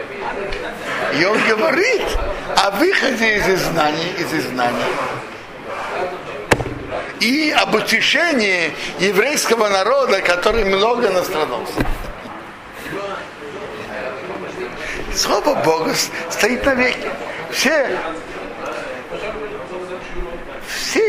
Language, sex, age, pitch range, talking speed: Russian, male, 60-79, 145-195 Hz, 70 wpm